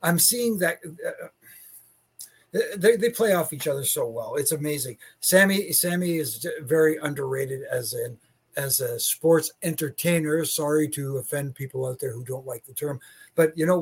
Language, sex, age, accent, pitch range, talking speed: English, male, 60-79, American, 140-165 Hz, 170 wpm